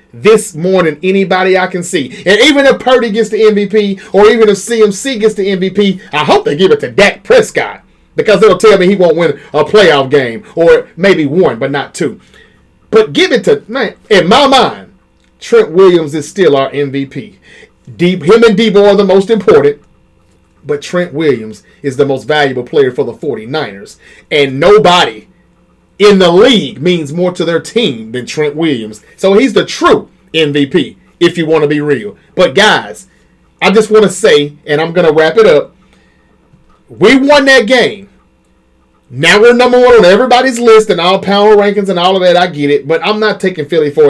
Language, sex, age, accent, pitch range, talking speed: English, male, 30-49, American, 150-220 Hz, 195 wpm